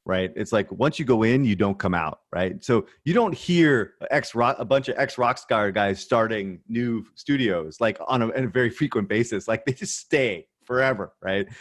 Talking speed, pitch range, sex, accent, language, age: 190 wpm, 100-135 Hz, male, American, English, 30-49